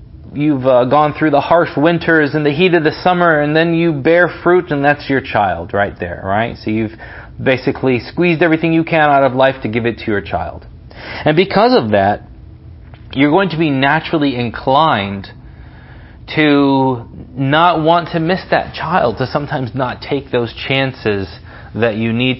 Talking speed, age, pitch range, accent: 180 wpm, 30-49, 105-135 Hz, American